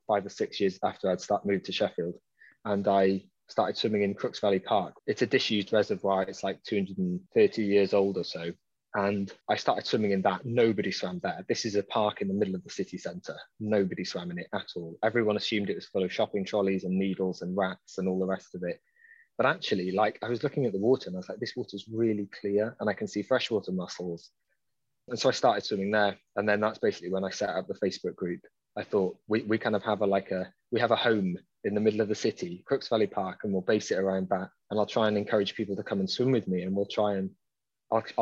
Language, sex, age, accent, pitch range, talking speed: English, male, 20-39, British, 95-120 Hz, 250 wpm